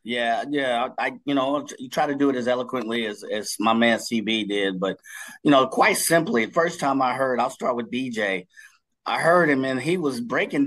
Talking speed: 220 wpm